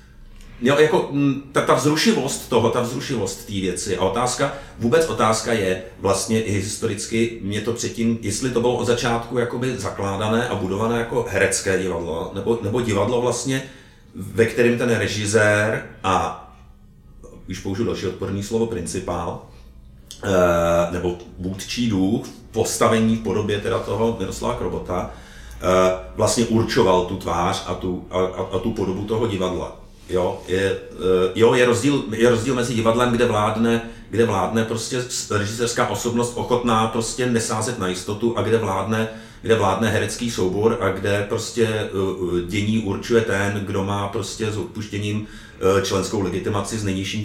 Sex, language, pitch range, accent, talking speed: male, Czech, 95-115 Hz, native, 140 wpm